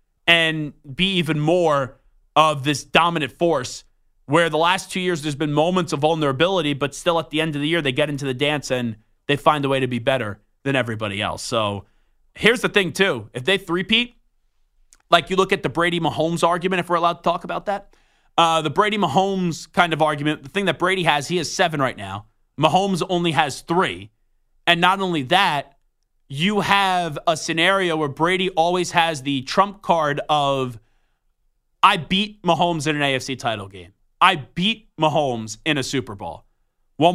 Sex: male